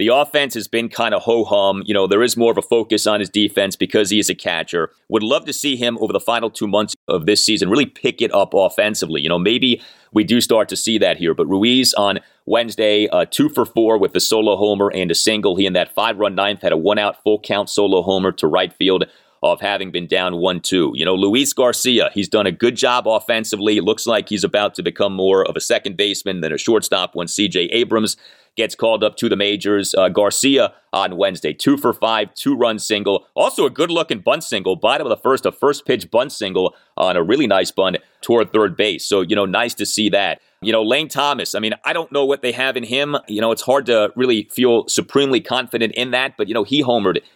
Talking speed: 235 wpm